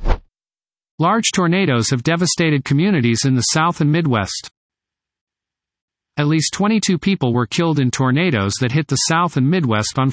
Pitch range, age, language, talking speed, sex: 115-165 Hz, 40-59, English, 150 wpm, male